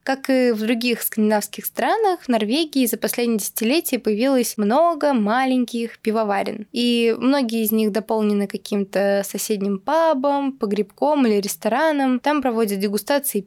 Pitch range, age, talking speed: 215-260 Hz, 20-39, 130 wpm